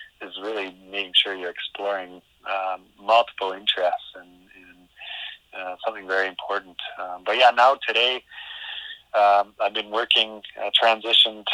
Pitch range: 90-105 Hz